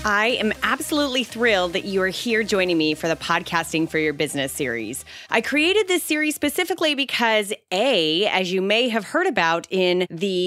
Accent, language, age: American, English, 30-49